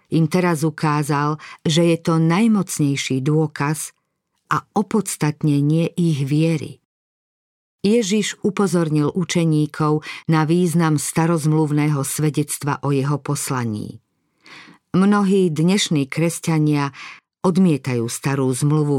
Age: 50-69